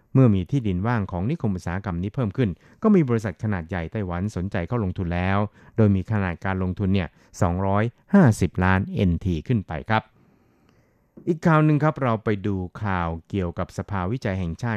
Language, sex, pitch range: Thai, male, 95-115 Hz